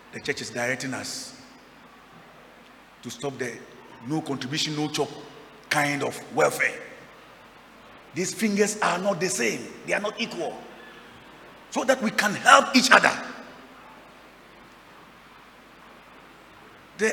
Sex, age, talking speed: male, 50-69, 110 wpm